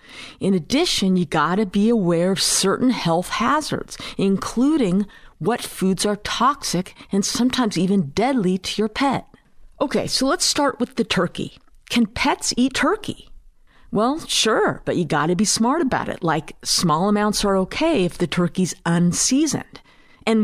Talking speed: 160 wpm